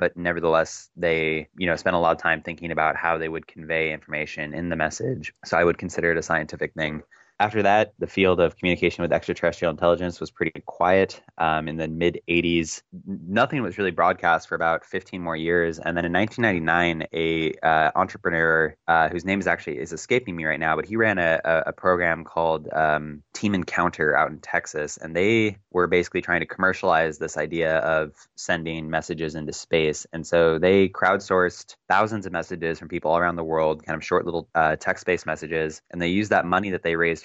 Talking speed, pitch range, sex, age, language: 205 wpm, 80-85 Hz, male, 20-39, English